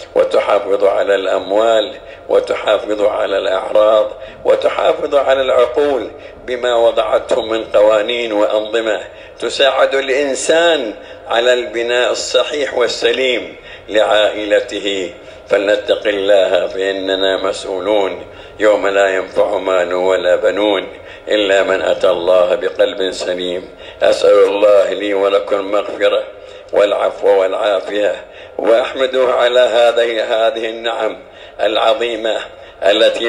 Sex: male